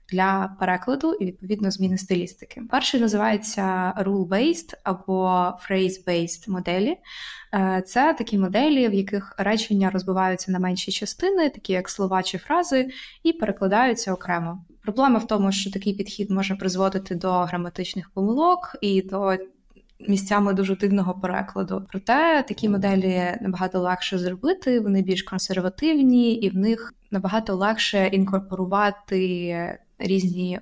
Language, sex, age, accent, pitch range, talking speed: Ukrainian, female, 20-39, native, 185-220 Hz, 125 wpm